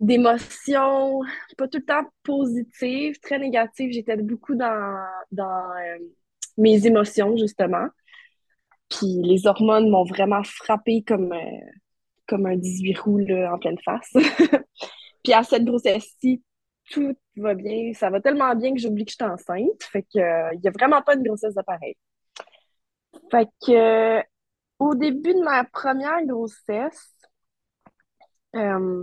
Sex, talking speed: female, 145 wpm